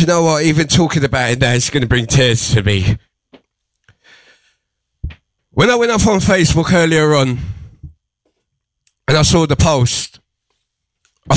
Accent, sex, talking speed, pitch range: British, male, 150 wpm, 125-190 Hz